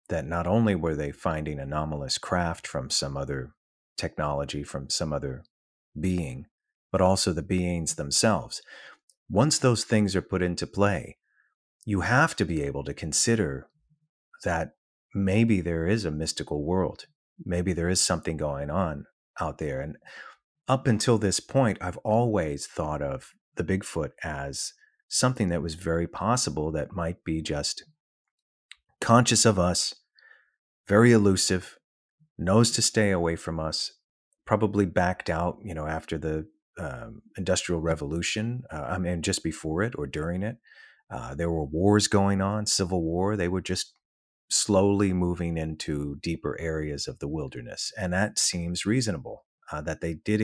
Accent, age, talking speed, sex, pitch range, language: American, 30-49, 150 wpm, male, 80-105 Hz, English